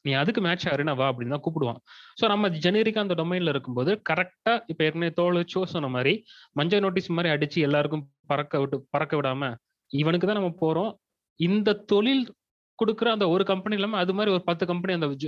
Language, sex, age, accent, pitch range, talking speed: Tamil, male, 30-49, native, 140-190 Hz, 175 wpm